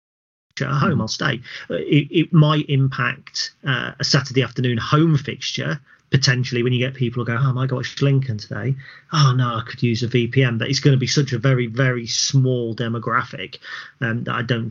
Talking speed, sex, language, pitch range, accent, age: 190 wpm, male, English, 115-130 Hz, British, 40-59